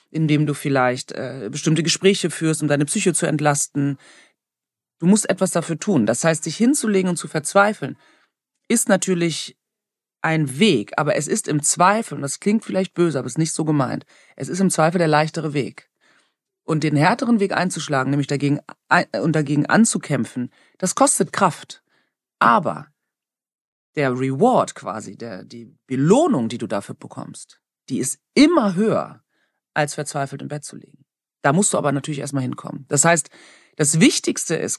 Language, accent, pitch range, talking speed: German, German, 145-190 Hz, 170 wpm